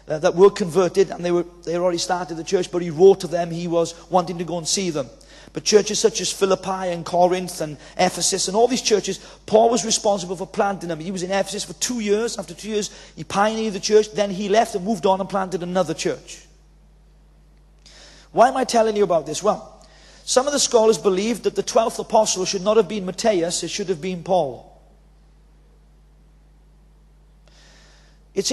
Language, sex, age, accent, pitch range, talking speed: English, male, 40-59, British, 185-225 Hz, 200 wpm